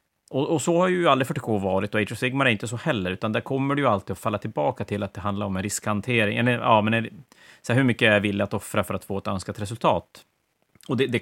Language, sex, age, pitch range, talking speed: Swedish, male, 30-49, 100-120 Hz, 285 wpm